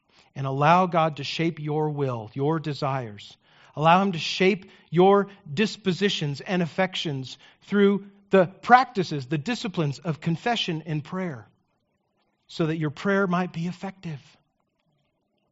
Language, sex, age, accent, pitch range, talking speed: English, male, 40-59, American, 140-185 Hz, 130 wpm